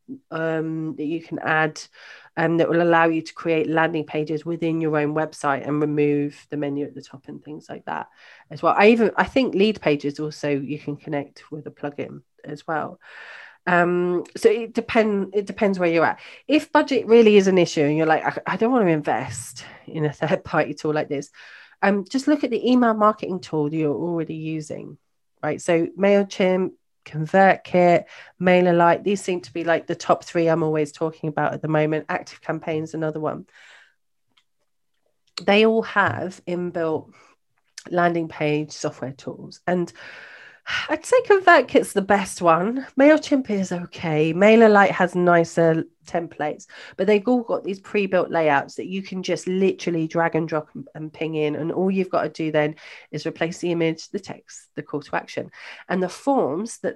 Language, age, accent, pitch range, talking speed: English, 30-49, British, 155-190 Hz, 185 wpm